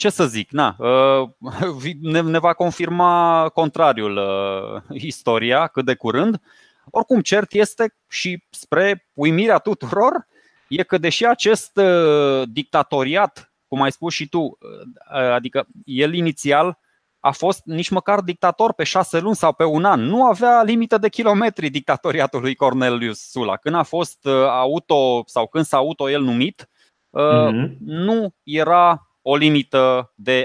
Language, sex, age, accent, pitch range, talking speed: Romanian, male, 20-39, native, 130-180 Hz, 130 wpm